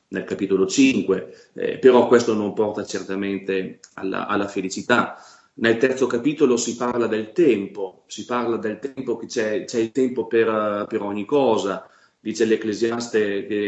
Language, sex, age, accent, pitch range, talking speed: Italian, male, 30-49, native, 100-120 Hz, 145 wpm